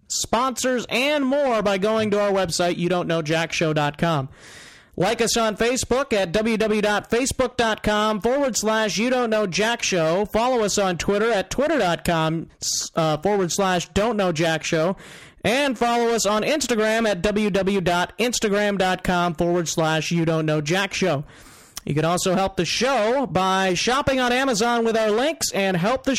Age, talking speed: 30-49, 155 wpm